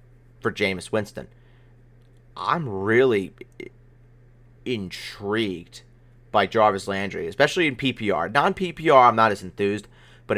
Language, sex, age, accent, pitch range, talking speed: English, male, 30-49, American, 110-130 Hz, 105 wpm